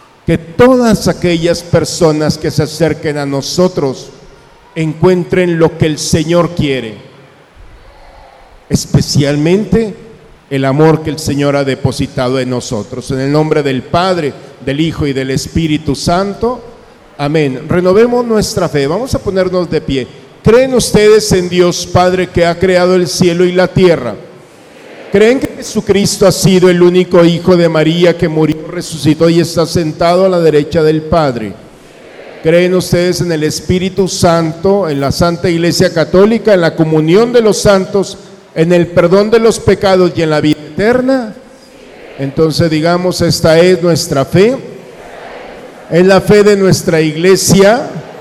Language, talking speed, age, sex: Spanish, 150 wpm, 50-69, male